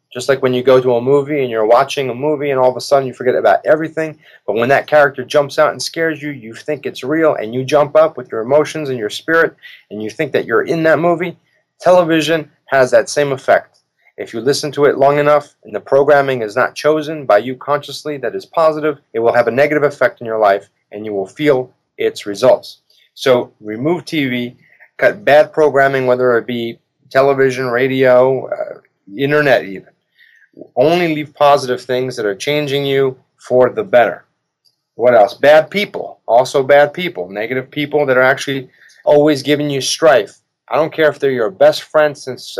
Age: 30-49